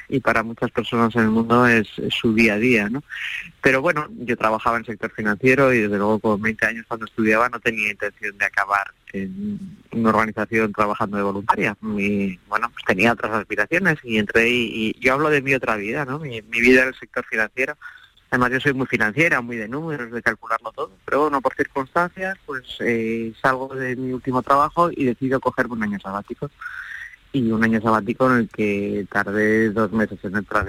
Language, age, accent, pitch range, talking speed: Spanish, 20-39, Spanish, 105-125 Hz, 200 wpm